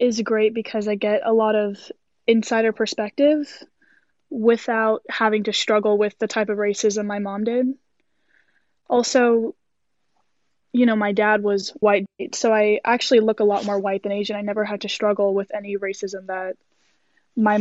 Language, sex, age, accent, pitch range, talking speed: English, female, 10-29, American, 210-235 Hz, 165 wpm